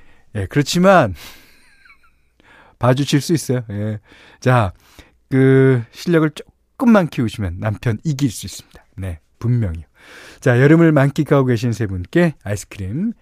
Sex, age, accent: male, 40-59, native